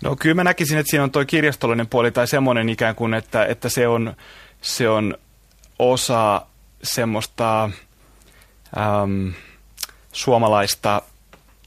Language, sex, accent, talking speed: Finnish, male, native, 125 wpm